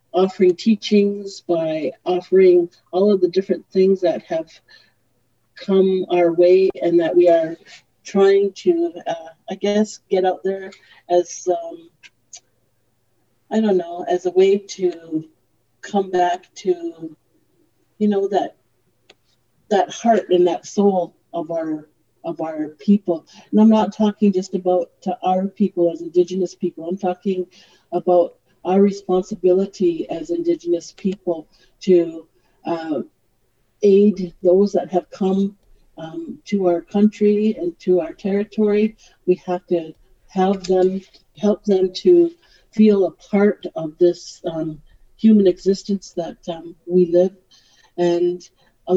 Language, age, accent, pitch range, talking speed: English, 50-69, American, 175-205 Hz, 130 wpm